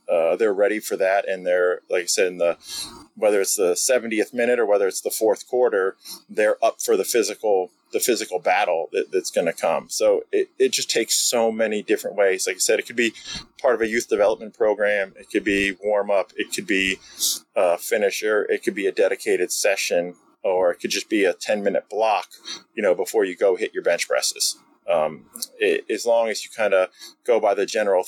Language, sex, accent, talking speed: English, male, American, 215 wpm